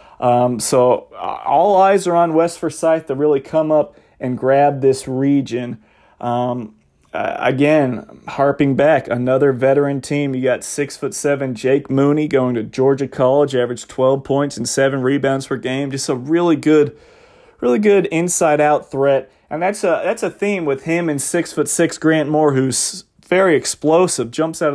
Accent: American